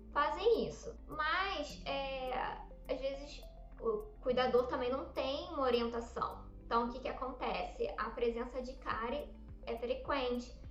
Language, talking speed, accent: Portuguese, 135 wpm, Brazilian